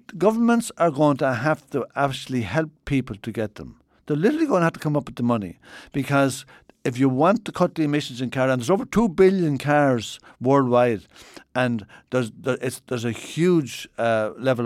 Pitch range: 115-145 Hz